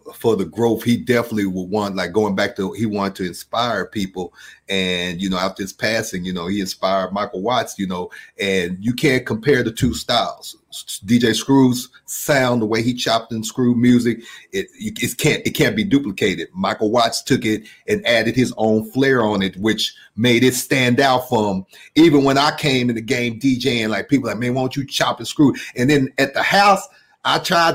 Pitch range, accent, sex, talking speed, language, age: 100-125 Hz, American, male, 210 wpm, English, 40-59